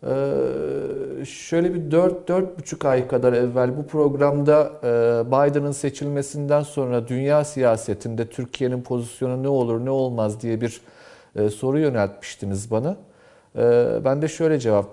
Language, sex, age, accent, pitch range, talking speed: Turkish, male, 40-59, native, 115-155 Hz, 130 wpm